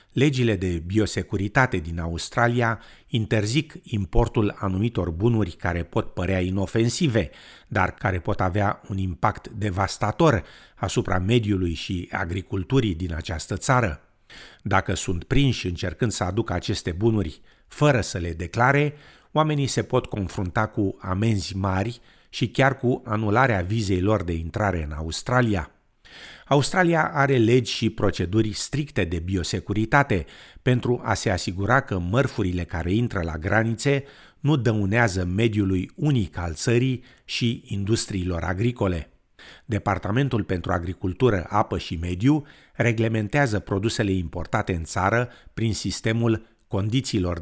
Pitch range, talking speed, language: 95-120 Hz, 125 wpm, Romanian